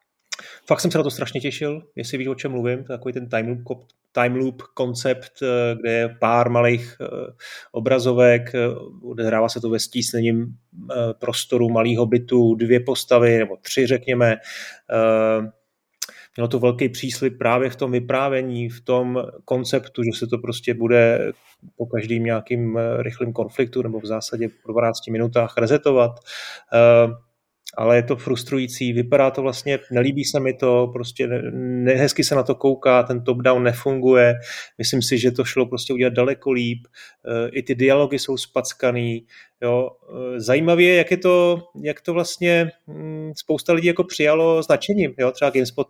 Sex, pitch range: male, 120-135 Hz